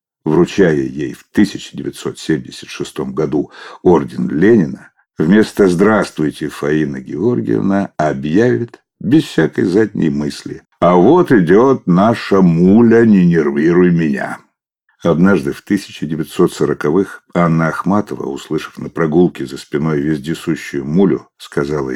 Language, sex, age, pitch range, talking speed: Russian, male, 60-79, 75-100 Hz, 100 wpm